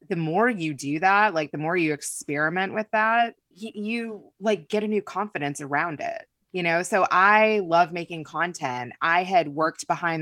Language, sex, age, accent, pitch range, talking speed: English, female, 20-39, American, 150-195 Hz, 180 wpm